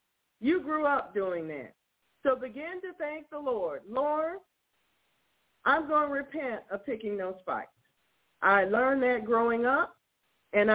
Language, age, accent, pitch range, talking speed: English, 50-69, American, 215-335 Hz, 145 wpm